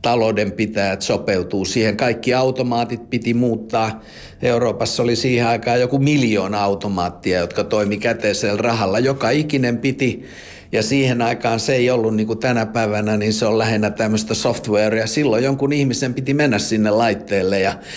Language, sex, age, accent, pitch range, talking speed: Finnish, male, 50-69, native, 105-125 Hz, 150 wpm